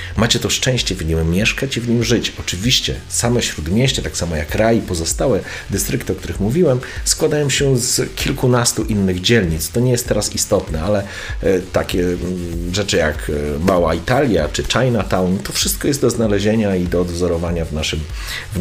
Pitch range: 85-115 Hz